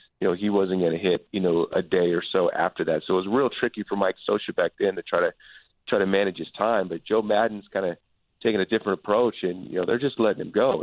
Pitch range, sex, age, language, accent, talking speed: 90-105 Hz, male, 40-59, English, American, 275 wpm